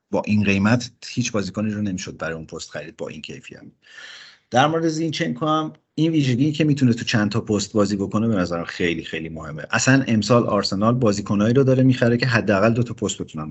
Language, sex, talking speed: Persian, male, 195 wpm